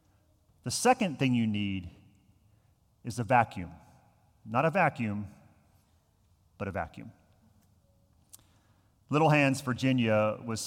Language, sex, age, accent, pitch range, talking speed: English, male, 40-59, American, 110-145 Hz, 100 wpm